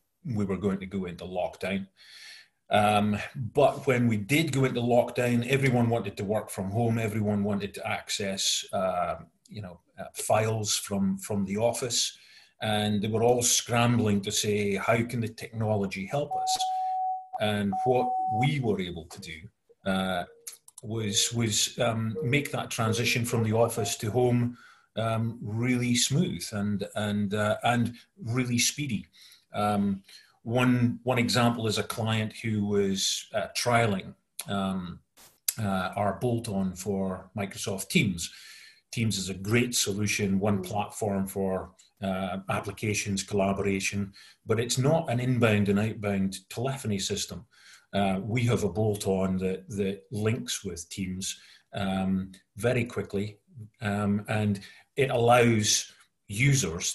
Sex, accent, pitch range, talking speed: male, British, 100-120 Hz, 140 wpm